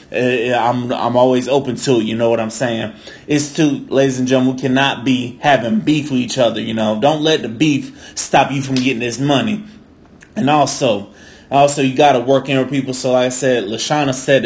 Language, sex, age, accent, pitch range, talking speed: English, male, 20-39, American, 120-150 Hz, 215 wpm